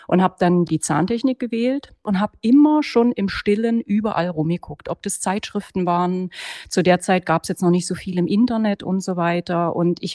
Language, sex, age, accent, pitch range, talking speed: German, female, 30-49, German, 185-235 Hz, 205 wpm